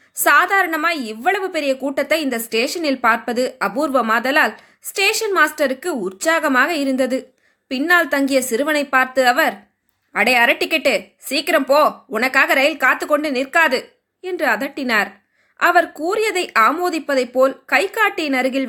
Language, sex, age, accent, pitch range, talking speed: Tamil, female, 20-39, native, 255-335 Hz, 110 wpm